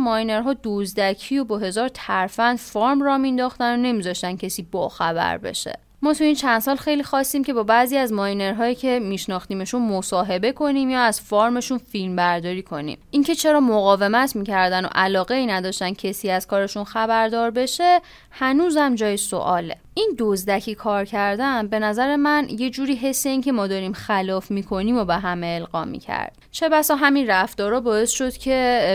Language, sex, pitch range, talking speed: Persian, female, 195-265 Hz, 170 wpm